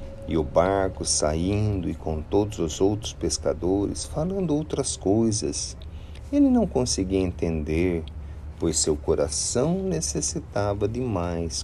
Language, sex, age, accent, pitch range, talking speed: Portuguese, male, 50-69, Brazilian, 85-125 Hz, 120 wpm